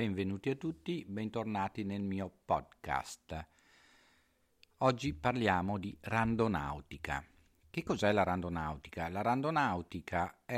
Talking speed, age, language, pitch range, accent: 100 wpm, 50-69, Italian, 85-100 Hz, native